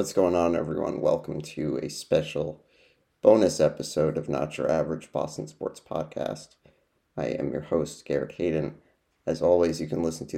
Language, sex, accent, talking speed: English, male, American, 170 wpm